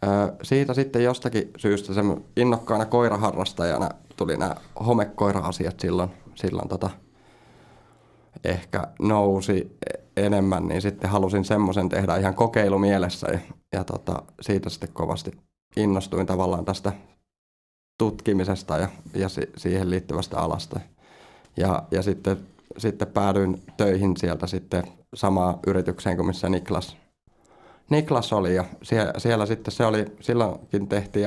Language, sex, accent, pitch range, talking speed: Finnish, male, native, 95-105 Hz, 115 wpm